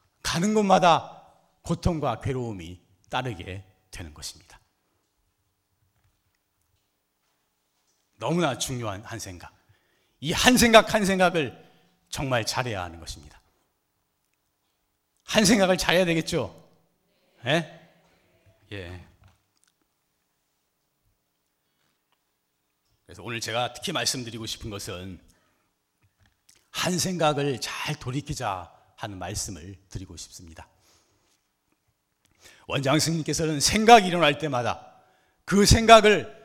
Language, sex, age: Korean, male, 40-59